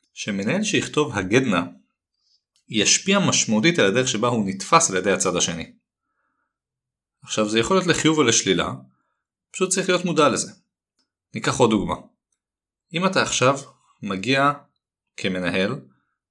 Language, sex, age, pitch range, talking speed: Hebrew, male, 30-49, 100-150 Hz, 125 wpm